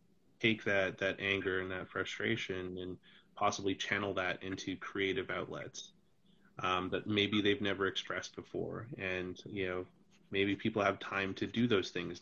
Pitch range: 95-105 Hz